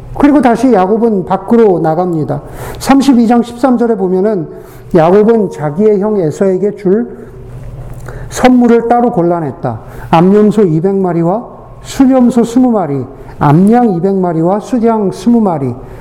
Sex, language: male, Korean